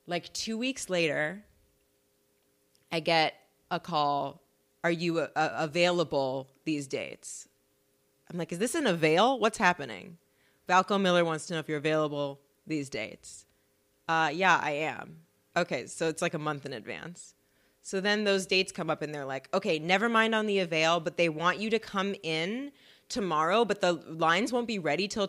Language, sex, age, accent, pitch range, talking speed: English, female, 30-49, American, 145-195 Hz, 175 wpm